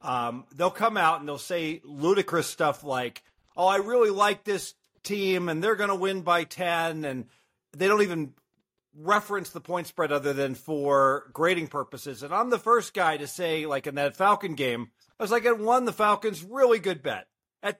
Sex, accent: male, American